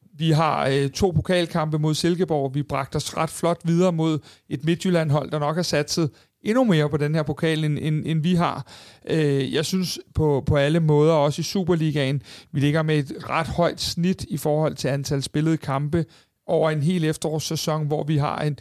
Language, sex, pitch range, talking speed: Danish, male, 140-165 Hz, 180 wpm